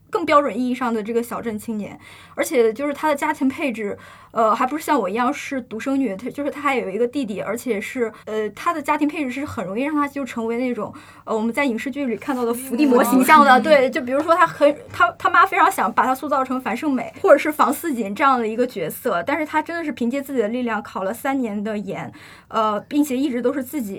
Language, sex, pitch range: Chinese, female, 235-295 Hz